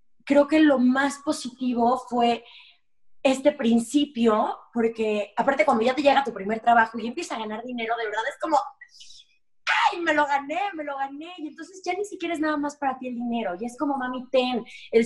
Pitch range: 205-275 Hz